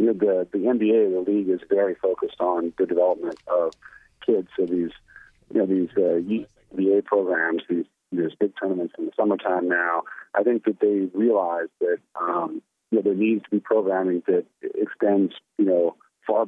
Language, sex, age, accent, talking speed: English, male, 40-59, American, 180 wpm